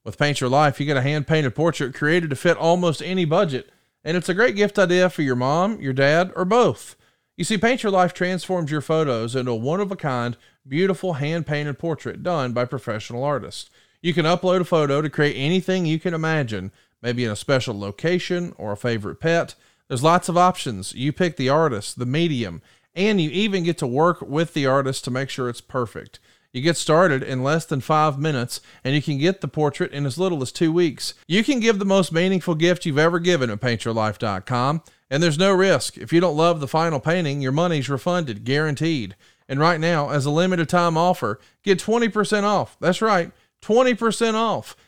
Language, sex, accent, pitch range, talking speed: English, male, American, 135-180 Hz, 205 wpm